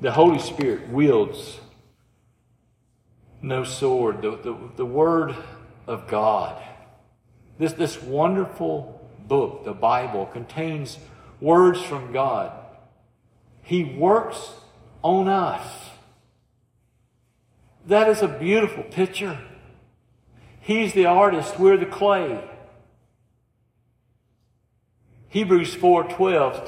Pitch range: 120-185 Hz